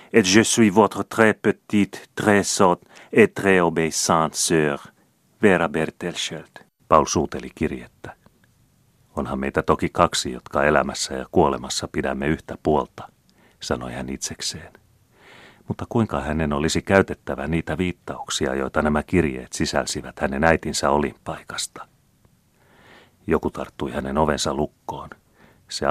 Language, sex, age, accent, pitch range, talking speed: Finnish, male, 40-59, native, 70-90 Hz, 105 wpm